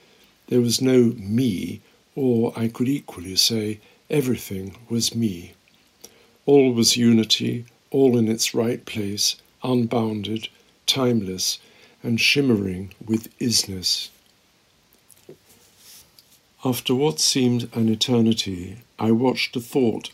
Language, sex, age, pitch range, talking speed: English, male, 60-79, 110-125 Hz, 105 wpm